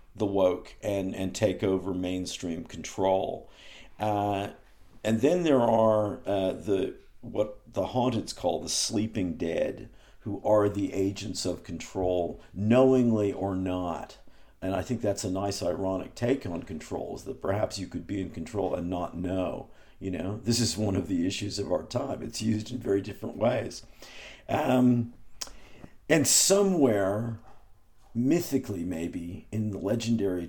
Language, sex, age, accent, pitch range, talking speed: English, male, 50-69, American, 95-115 Hz, 150 wpm